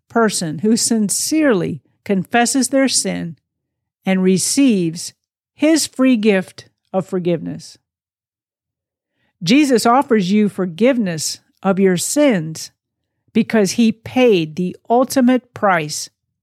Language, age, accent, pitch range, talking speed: English, 50-69, American, 155-220 Hz, 95 wpm